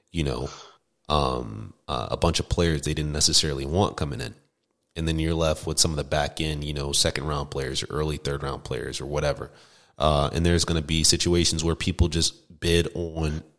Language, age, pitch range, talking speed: English, 30-49, 75-90 Hz, 210 wpm